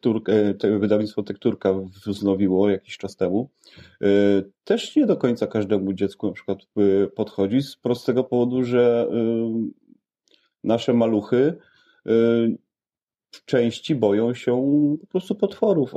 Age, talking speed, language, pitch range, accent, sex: 30-49, 115 wpm, Polish, 95-120 Hz, native, male